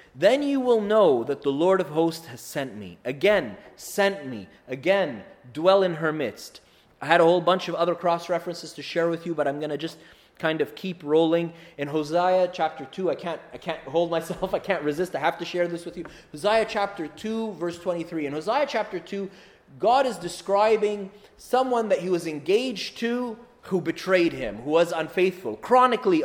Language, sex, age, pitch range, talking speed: English, male, 30-49, 155-195 Hz, 195 wpm